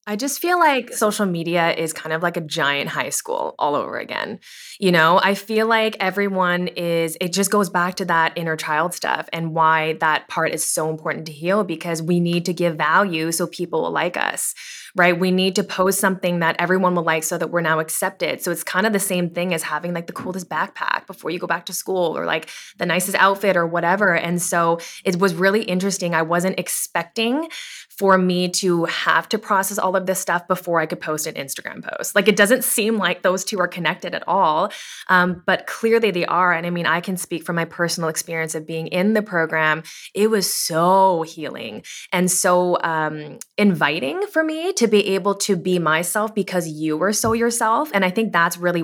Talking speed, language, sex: 215 wpm, English, female